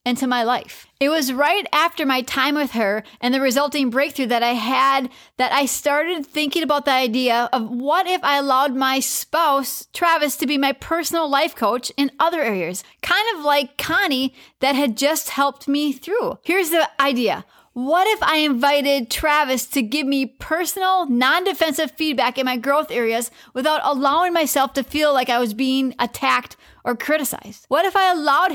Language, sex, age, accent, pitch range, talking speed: English, female, 30-49, American, 260-315 Hz, 180 wpm